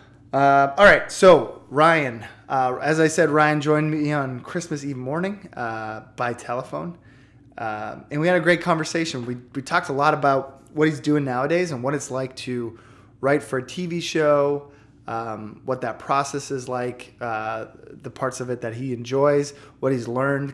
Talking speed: 185 wpm